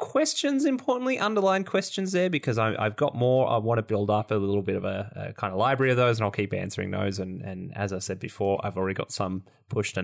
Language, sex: English, male